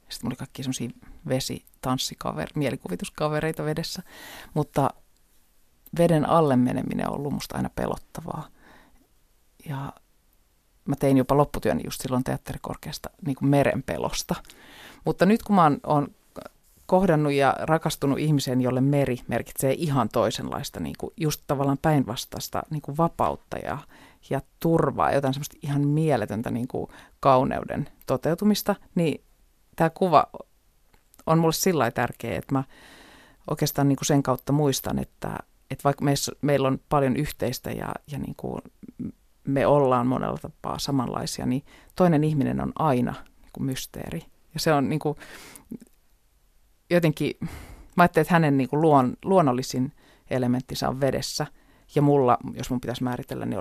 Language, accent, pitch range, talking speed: Finnish, native, 130-160 Hz, 125 wpm